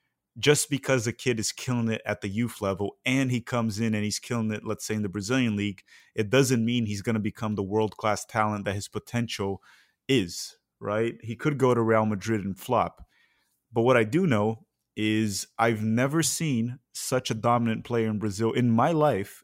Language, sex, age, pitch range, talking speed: English, male, 30-49, 110-140 Hz, 205 wpm